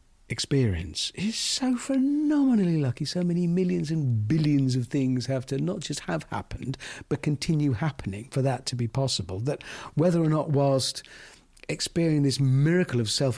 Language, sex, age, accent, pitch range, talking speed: English, male, 50-69, British, 110-140 Hz, 165 wpm